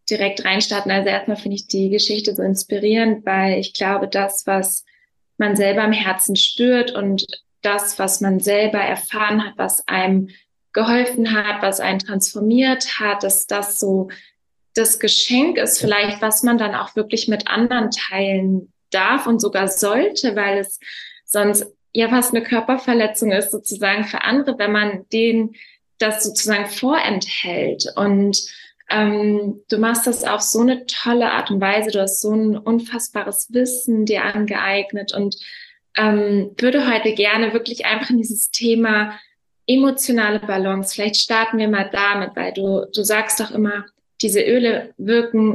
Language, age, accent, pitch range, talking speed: German, 20-39, German, 200-230 Hz, 155 wpm